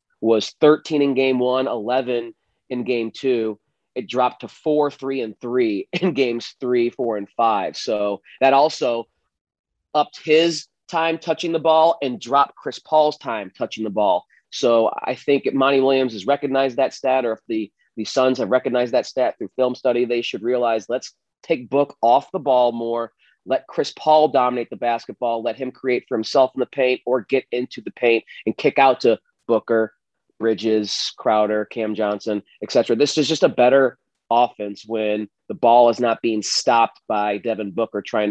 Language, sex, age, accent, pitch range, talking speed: English, male, 30-49, American, 110-135 Hz, 185 wpm